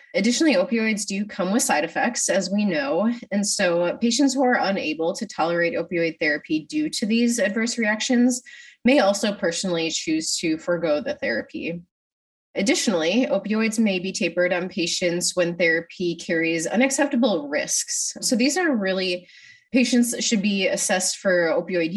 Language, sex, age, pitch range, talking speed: English, female, 20-39, 175-255 Hz, 155 wpm